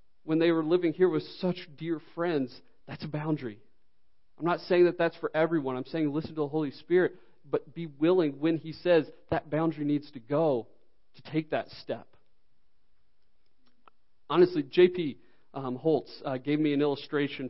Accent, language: American, English